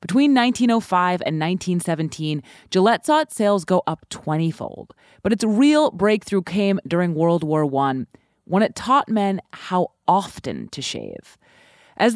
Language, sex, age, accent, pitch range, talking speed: English, female, 30-49, American, 165-225 Hz, 145 wpm